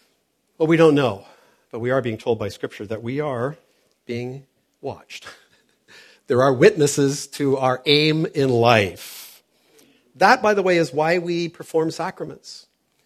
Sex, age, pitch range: male, 50-69, 135-180 Hz